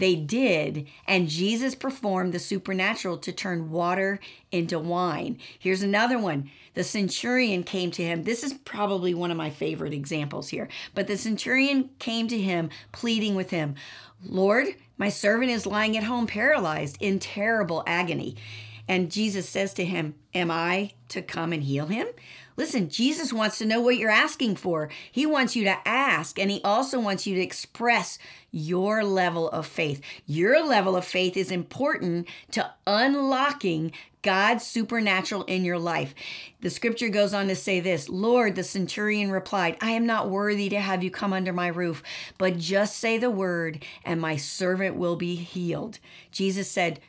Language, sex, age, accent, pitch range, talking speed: English, female, 50-69, American, 175-215 Hz, 170 wpm